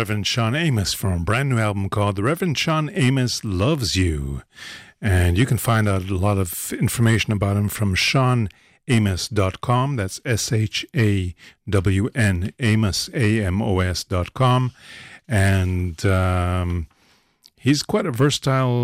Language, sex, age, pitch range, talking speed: English, male, 50-69, 90-115 Hz, 150 wpm